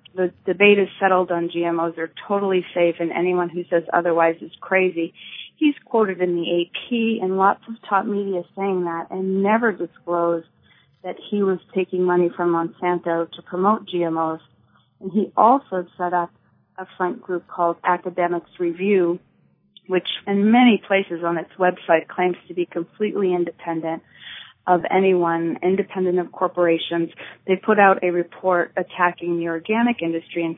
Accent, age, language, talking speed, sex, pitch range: American, 30-49, English, 155 wpm, female, 170-195 Hz